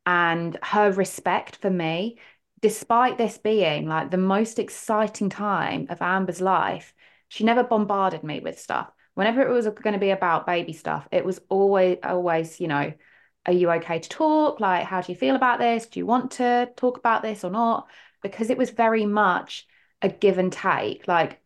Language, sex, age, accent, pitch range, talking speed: English, female, 20-39, British, 175-220 Hz, 190 wpm